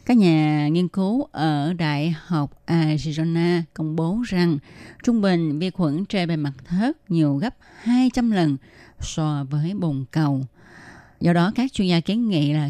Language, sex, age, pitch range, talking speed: Vietnamese, female, 20-39, 150-195 Hz, 165 wpm